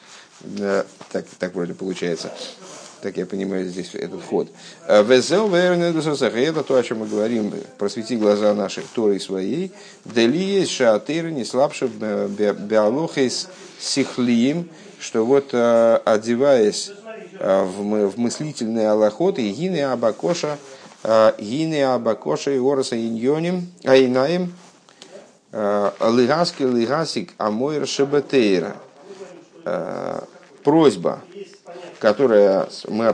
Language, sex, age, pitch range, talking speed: Russian, male, 50-69, 105-155 Hz, 90 wpm